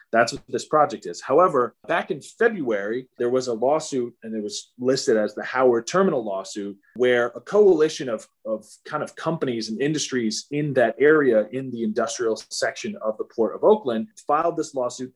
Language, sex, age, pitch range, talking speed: English, male, 30-49, 110-150 Hz, 185 wpm